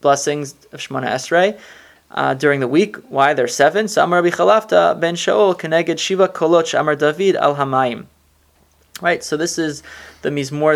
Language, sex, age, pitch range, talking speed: English, male, 20-39, 140-180 Hz, 165 wpm